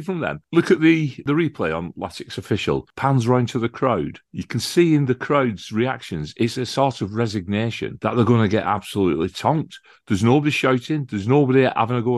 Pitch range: 95-130 Hz